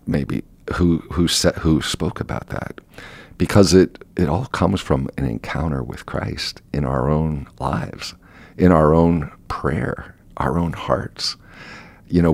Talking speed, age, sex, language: 150 wpm, 50-69, male, English